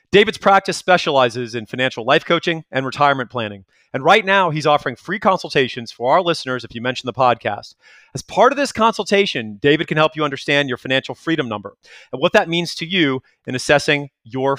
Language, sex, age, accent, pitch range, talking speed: English, male, 30-49, American, 130-175 Hz, 200 wpm